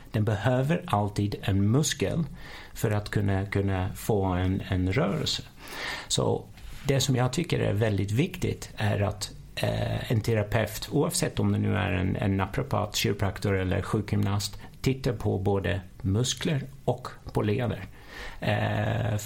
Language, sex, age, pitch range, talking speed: Swedish, male, 50-69, 100-125 Hz, 140 wpm